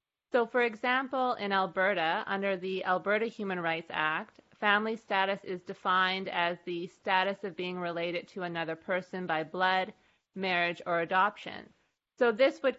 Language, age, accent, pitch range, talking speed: English, 30-49, American, 175-205 Hz, 150 wpm